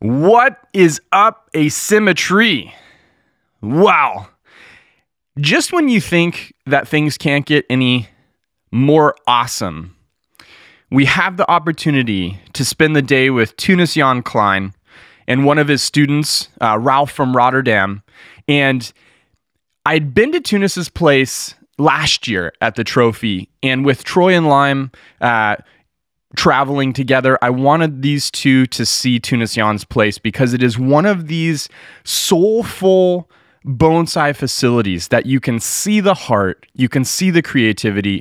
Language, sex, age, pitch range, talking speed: English, male, 20-39, 115-155 Hz, 135 wpm